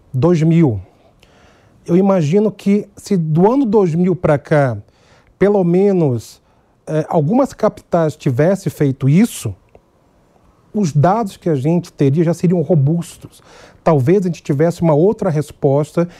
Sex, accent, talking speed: male, Brazilian, 125 wpm